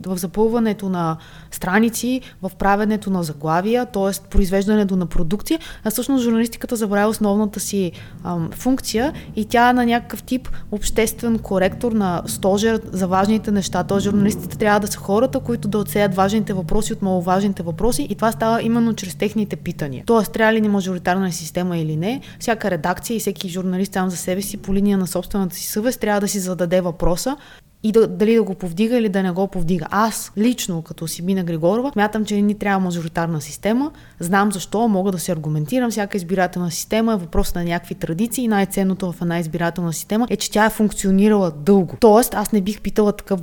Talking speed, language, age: 185 wpm, Bulgarian, 20-39